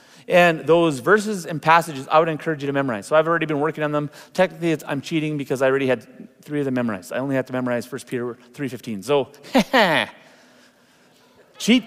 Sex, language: male, English